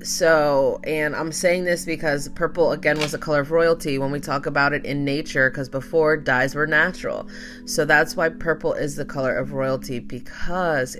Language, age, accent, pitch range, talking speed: English, 20-39, American, 140-170 Hz, 190 wpm